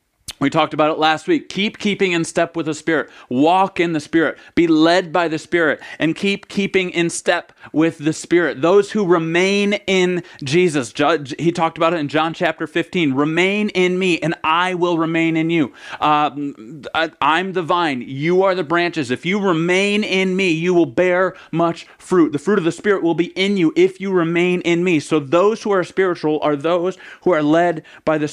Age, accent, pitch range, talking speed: 30-49, American, 160-190 Hz, 210 wpm